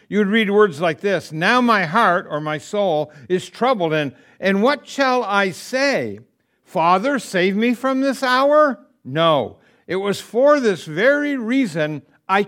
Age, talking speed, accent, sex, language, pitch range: 60-79, 165 wpm, American, male, English, 155-220 Hz